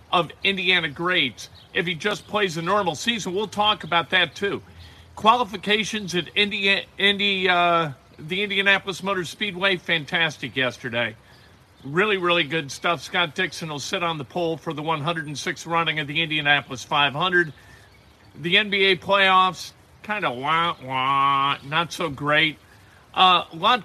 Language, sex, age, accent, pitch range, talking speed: English, male, 50-69, American, 150-210 Hz, 145 wpm